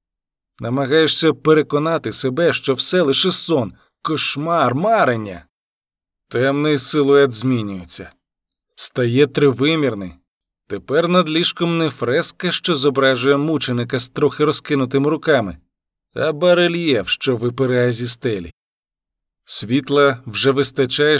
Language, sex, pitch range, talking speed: Ukrainian, male, 125-150 Hz, 100 wpm